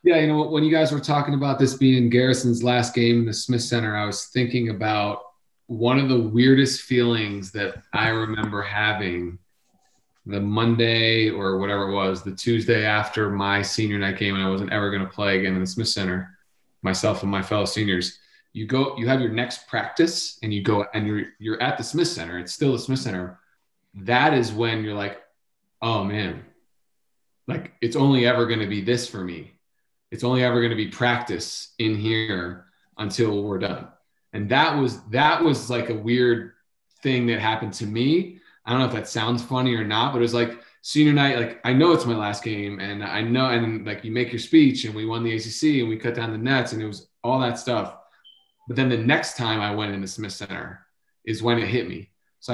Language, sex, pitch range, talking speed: English, male, 105-130 Hz, 210 wpm